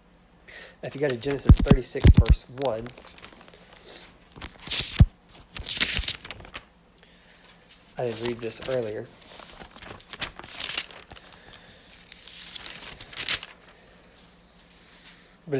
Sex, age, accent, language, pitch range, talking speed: male, 20-39, American, English, 115-130 Hz, 55 wpm